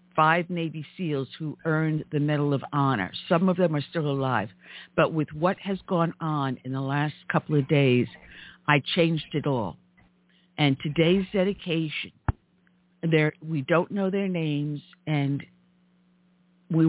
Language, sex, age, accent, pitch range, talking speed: English, female, 50-69, American, 140-180 Hz, 145 wpm